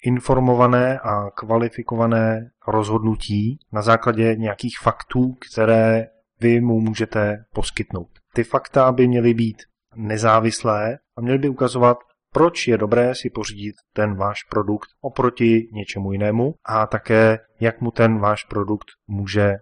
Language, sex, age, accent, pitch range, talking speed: Czech, male, 20-39, native, 105-120 Hz, 130 wpm